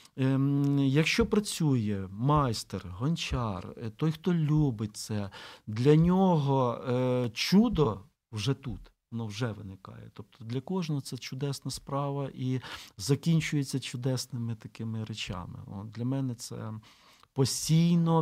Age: 50-69